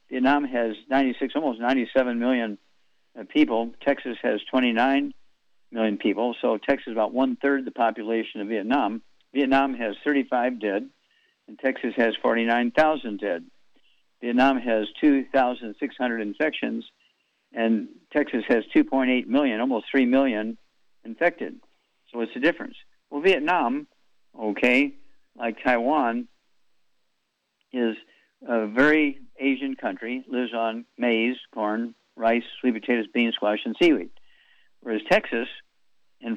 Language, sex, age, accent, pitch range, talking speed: English, male, 60-79, American, 115-150 Hz, 120 wpm